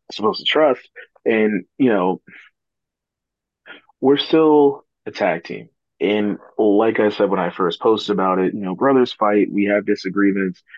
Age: 30-49